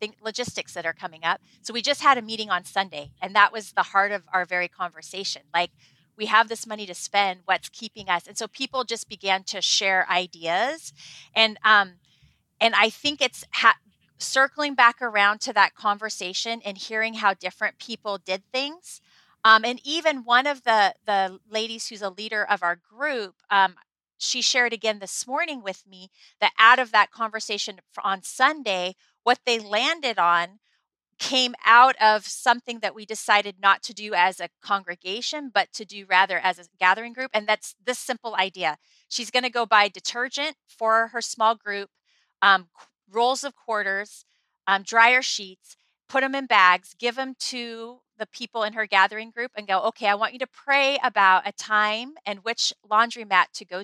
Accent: American